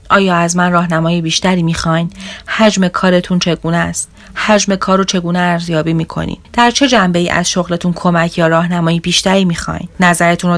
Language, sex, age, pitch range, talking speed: Persian, female, 30-49, 160-185 Hz, 160 wpm